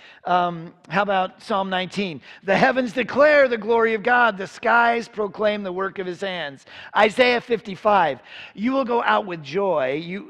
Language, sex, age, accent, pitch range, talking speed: English, male, 40-59, American, 195-260 Hz, 170 wpm